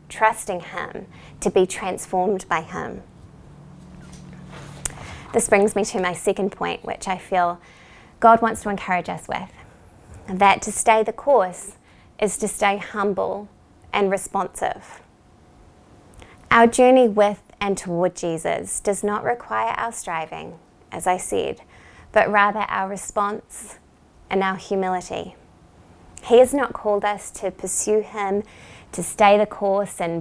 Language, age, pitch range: English, 20-39, 180-210 Hz